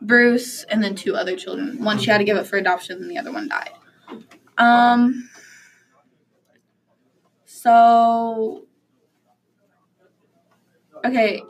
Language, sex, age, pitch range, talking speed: English, female, 10-29, 210-265 Hz, 115 wpm